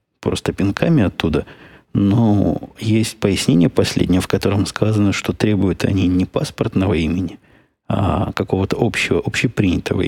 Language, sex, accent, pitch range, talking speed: Russian, male, native, 95-110 Hz, 120 wpm